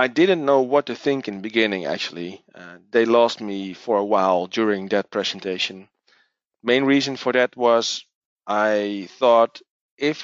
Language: English